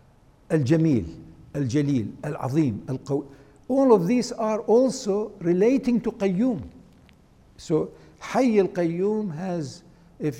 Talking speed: 100 wpm